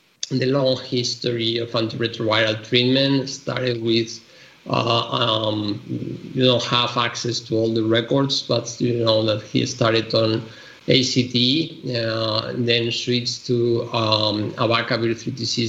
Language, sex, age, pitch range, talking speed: English, male, 50-69, 115-130 Hz, 130 wpm